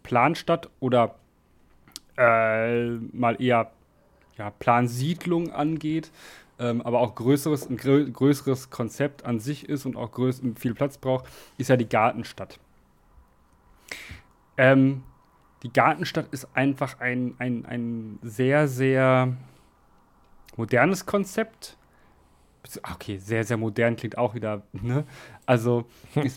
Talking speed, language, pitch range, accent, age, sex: 115 wpm, German, 110-135 Hz, German, 30-49, male